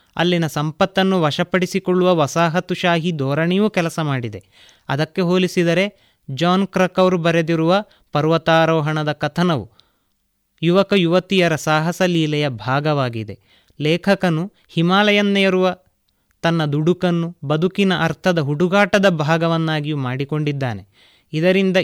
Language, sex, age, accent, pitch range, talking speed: Kannada, male, 30-49, native, 150-180 Hz, 80 wpm